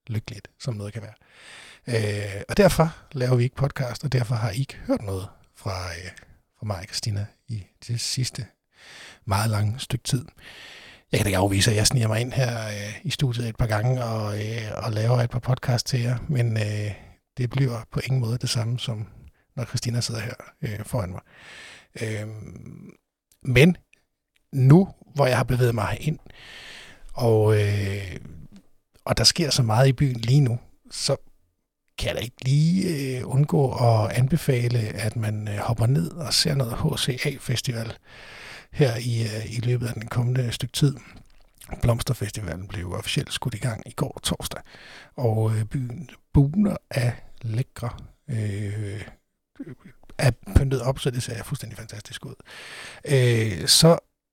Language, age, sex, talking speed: Danish, 60-79, male, 160 wpm